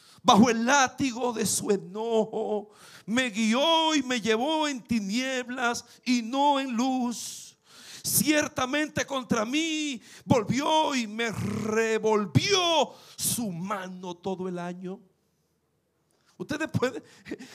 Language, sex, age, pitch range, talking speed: Spanish, male, 50-69, 195-255 Hz, 105 wpm